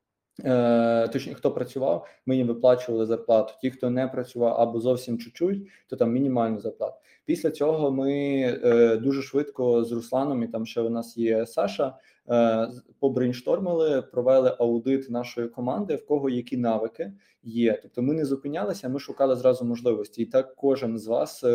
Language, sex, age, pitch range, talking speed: Ukrainian, male, 20-39, 120-140 Hz, 155 wpm